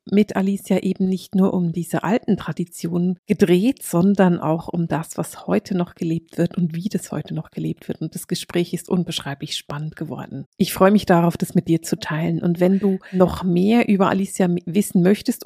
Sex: female